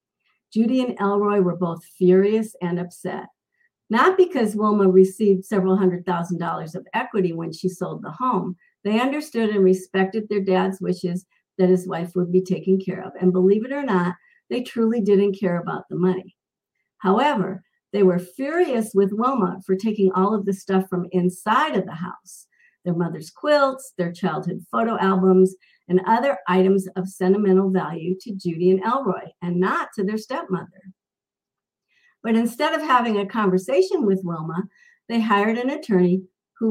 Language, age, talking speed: English, 50-69, 165 wpm